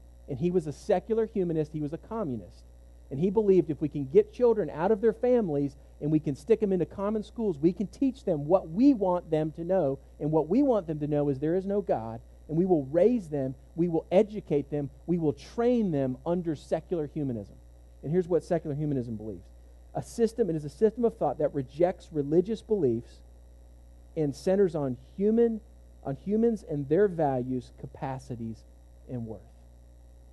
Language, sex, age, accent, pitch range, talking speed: English, male, 40-59, American, 115-185 Hz, 195 wpm